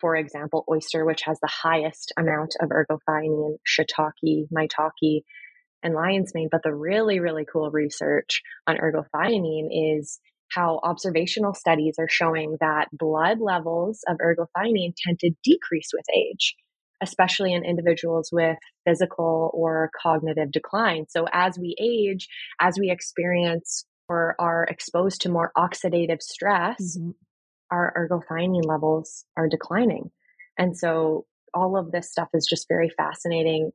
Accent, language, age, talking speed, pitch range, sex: American, English, 20-39, 135 wpm, 160-185 Hz, female